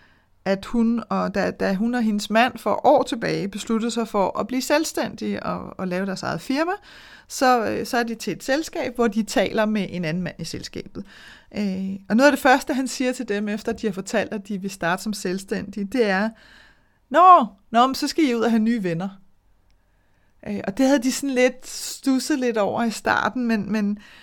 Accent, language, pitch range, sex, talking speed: native, Danish, 200-250 Hz, female, 200 wpm